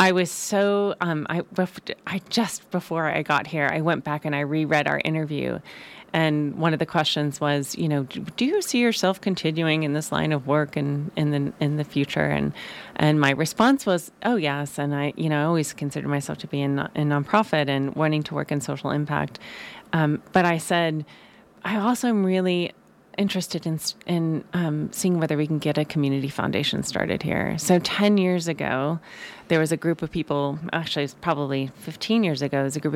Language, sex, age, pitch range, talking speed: English, female, 30-49, 145-180 Hz, 205 wpm